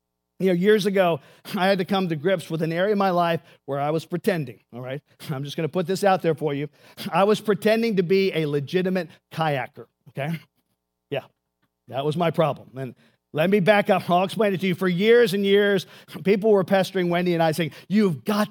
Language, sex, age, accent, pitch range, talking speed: English, male, 40-59, American, 160-205 Hz, 225 wpm